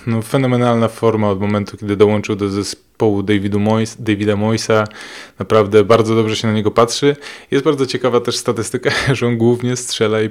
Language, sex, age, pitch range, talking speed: Polish, male, 20-39, 100-110 Hz, 175 wpm